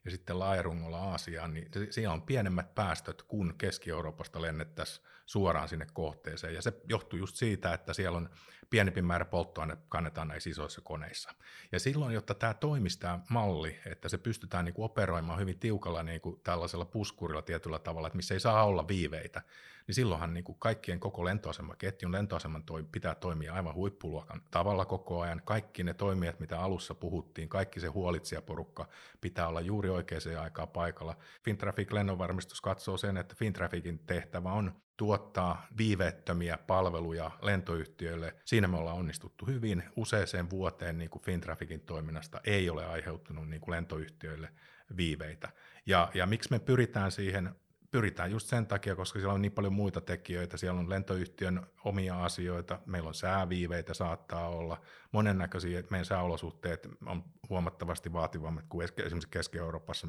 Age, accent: 50-69, native